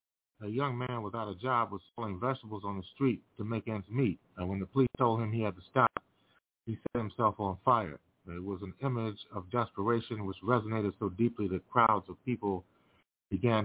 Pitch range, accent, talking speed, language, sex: 100-120 Hz, American, 200 wpm, English, male